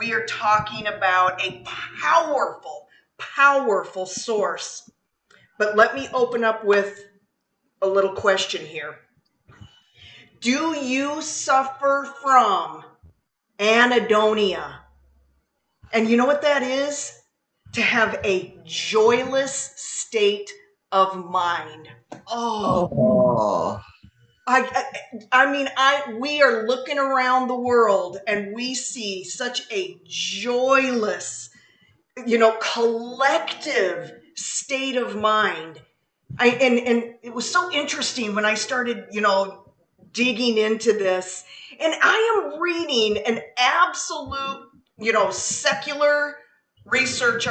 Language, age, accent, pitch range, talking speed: English, 40-59, American, 205-270 Hz, 110 wpm